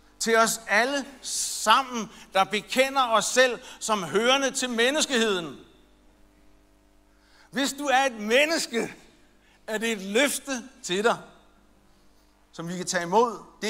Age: 60-79